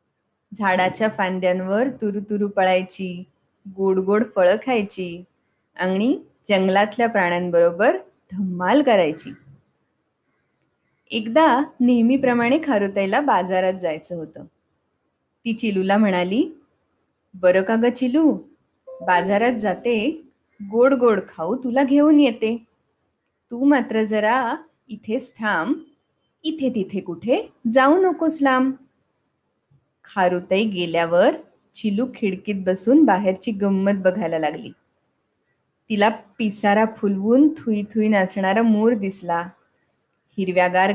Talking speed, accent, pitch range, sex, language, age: 90 wpm, native, 185-255 Hz, female, Marathi, 20-39